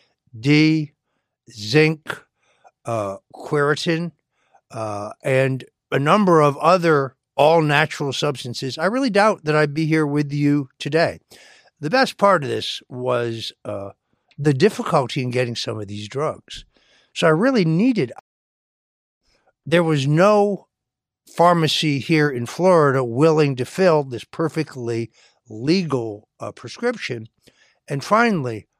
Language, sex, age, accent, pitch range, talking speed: English, male, 60-79, American, 125-165 Hz, 120 wpm